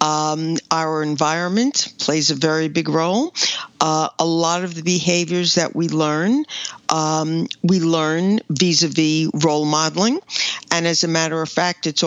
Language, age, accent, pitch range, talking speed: English, 50-69, American, 155-175 Hz, 150 wpm